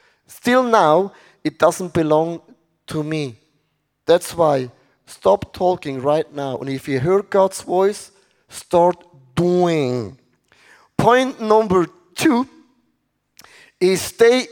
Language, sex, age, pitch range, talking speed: English, male, 30-49, 150-185 Hz, 110 wpm